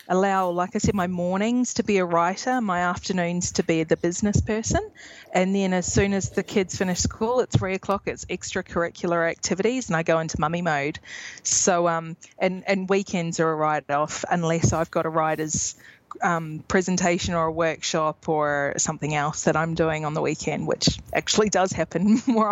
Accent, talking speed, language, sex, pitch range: Australian, 185 wpm, English, female, 160-195 Hz